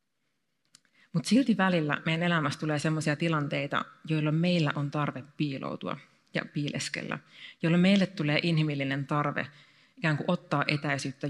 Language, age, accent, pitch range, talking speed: Finnish, 30-49, native, 145-170 Hz, 125 wpm